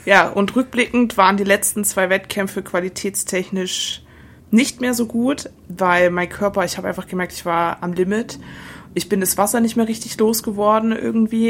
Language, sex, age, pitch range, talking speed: German, female, 20-39, 180-215 Hz, 170 wpm